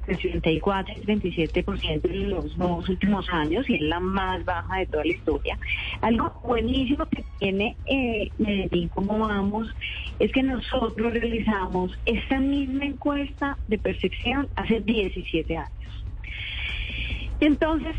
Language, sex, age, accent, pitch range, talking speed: Spanish, female, 30-49, Colombian, 175-225 Hz, 135 wpm